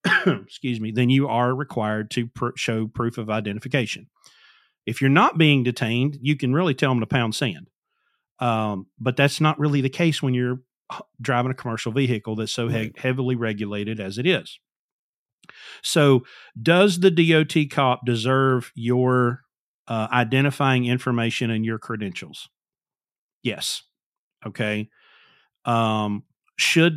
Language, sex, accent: English, male, American